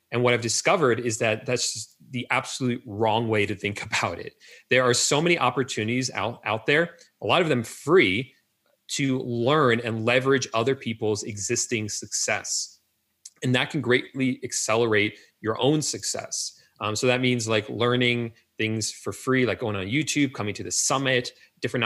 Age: 30-49